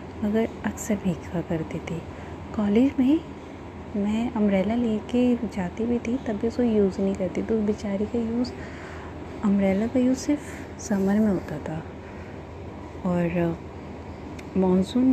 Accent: native